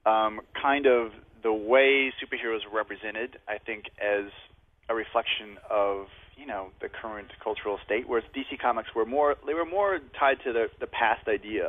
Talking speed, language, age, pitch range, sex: 175 wpm, English, 30-49, 105-130 Hz, male